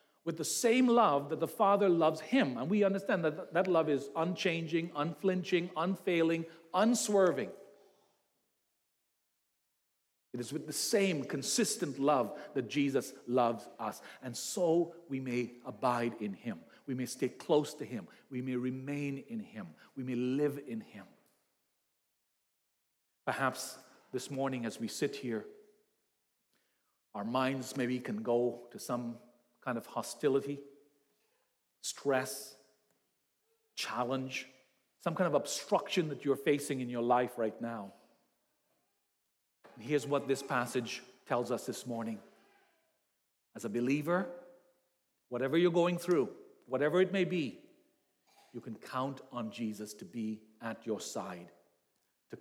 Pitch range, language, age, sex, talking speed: 120-170 Hz, English, 40-59, male, 130 wpm